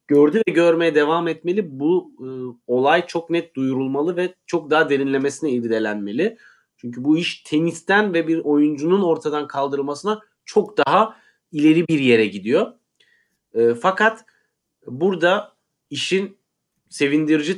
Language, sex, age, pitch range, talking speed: Turkish, male, 40-59, 125-165 Hz, 125 wpm